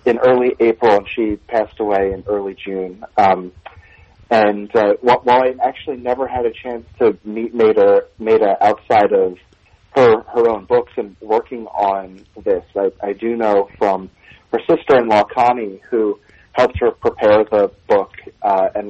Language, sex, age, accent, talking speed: English, male, 30-49, American, 160 wpm